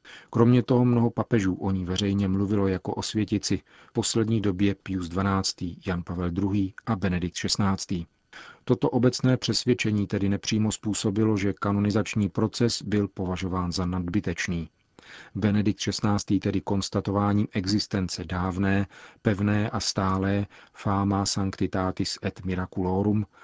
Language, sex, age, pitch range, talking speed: Czech, male, 40-59, 95-110 Hz, 120 wpm